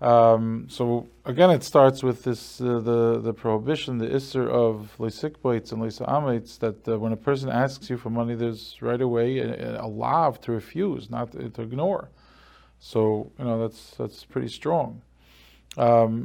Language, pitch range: English, 110-130 Hz